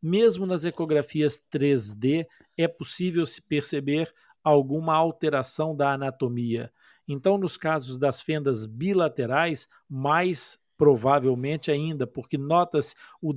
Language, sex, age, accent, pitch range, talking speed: Portuguese, male, 50-69, Brazilian, 135-160 Hz, 110 wpm